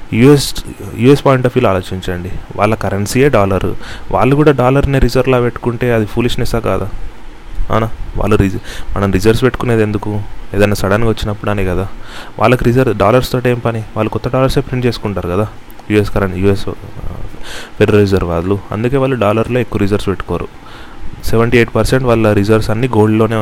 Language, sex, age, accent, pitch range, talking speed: Telugu, male, 30-49, native, 100-120 Hz, 145 wpm